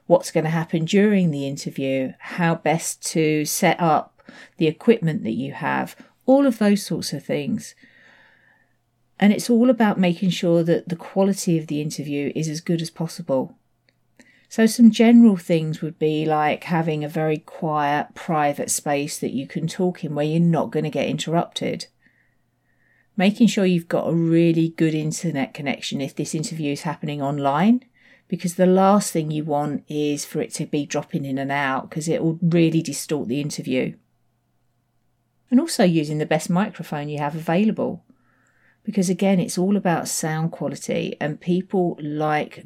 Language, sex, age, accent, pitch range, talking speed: English, female, 40-59, British, 150-195 Hz, 170 wpm